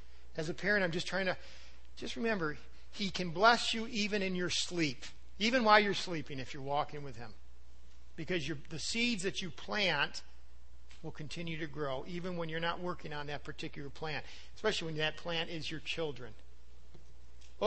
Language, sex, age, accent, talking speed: English, male, 50-69, American, 180 wpm